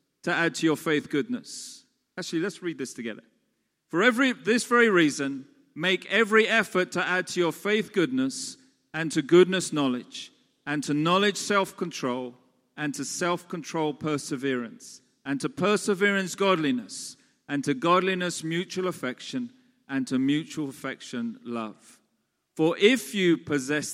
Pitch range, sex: 145-220 Hz, male